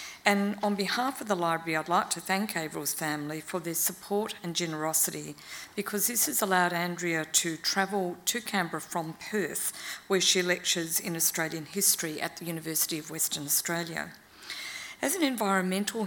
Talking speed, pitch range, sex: 160 wpm, 160-195 Hz, female